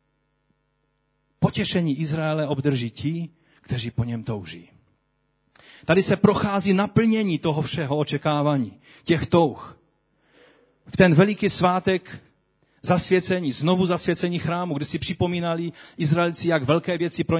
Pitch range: 145-175 Hz